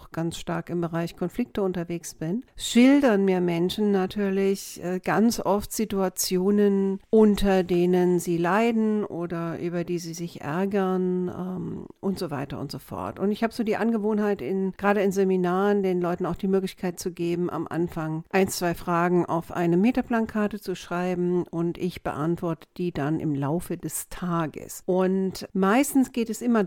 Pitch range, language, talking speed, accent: 170-210 Hz, German, 155 wpm, German